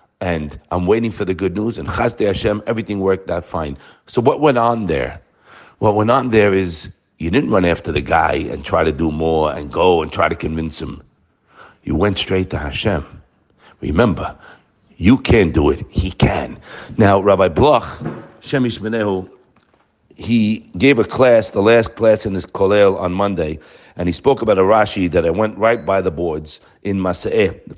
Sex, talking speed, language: male, 190 wpm, English